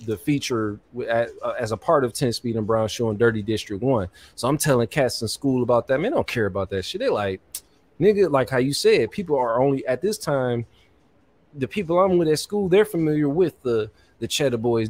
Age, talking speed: 20-39, 220 wpm